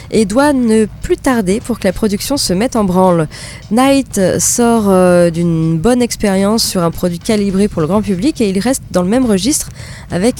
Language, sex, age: French, female, 20-39